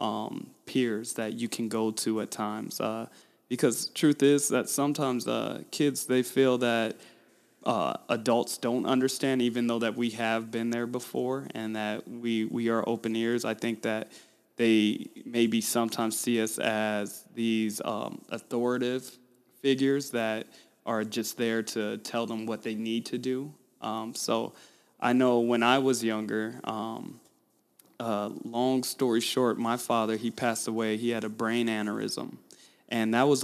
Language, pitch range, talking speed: English, 110-125 Hz, 160 wpm